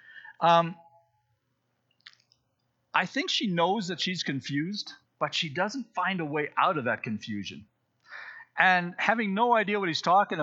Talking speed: 145 wpm